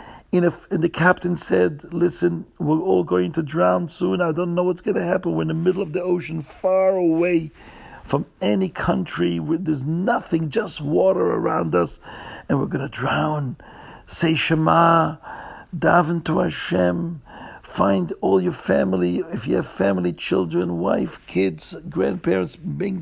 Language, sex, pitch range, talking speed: English, male, 105-180 Hz, 155 wpm